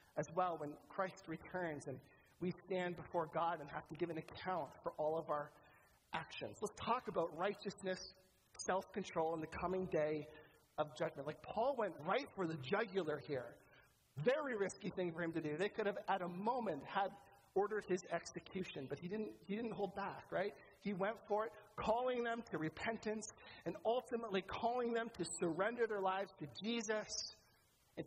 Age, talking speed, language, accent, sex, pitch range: 40-59, 175 wpm, English, American, male, 160-215 Hz